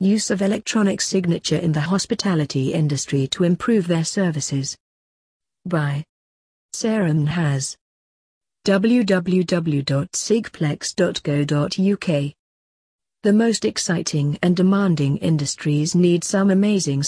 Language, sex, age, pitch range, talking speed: English, female, 40-59, 145-195 Hz, 90 wpm